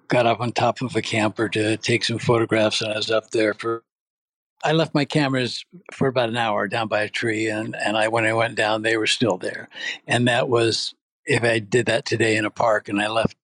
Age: 60-79